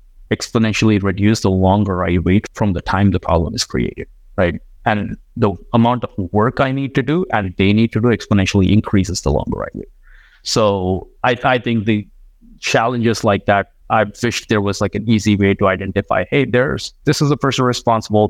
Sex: male